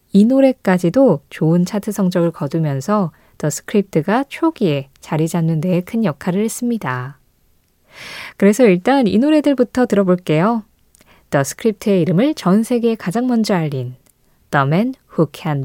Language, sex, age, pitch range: Korean, female, 20-39, 160-225 Hz